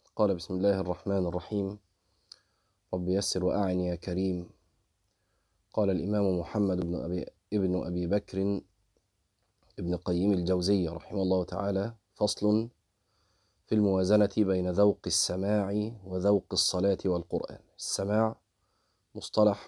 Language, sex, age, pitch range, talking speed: Arabic, male, 30-49, 90-105 Hz, 105 wpm